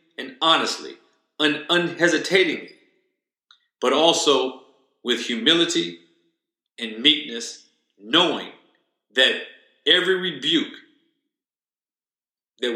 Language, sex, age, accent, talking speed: English, male, 40-59, American, 65 wpm